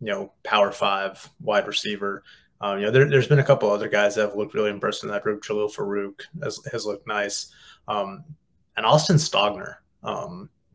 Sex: male